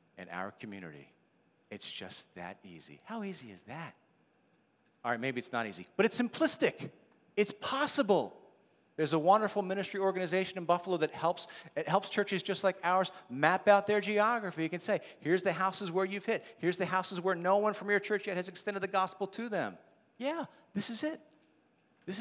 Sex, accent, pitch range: male, American, 155-210 Hz